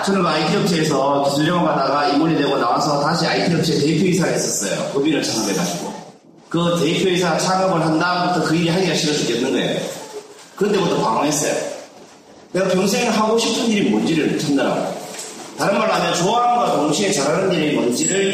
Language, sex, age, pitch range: Korean, male, 40-59, 160-210 Hz